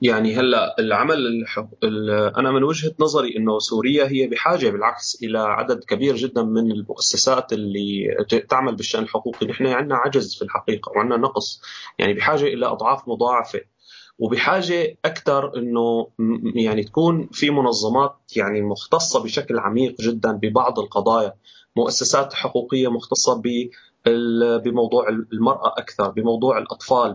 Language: Arabic